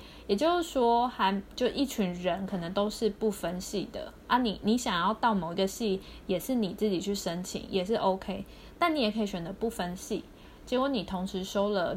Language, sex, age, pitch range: Chinese, female, 20-39, 190-235 Hz